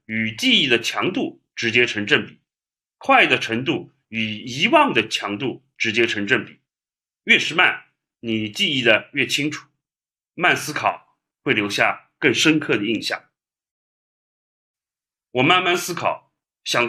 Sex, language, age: male, Chinese, 30-49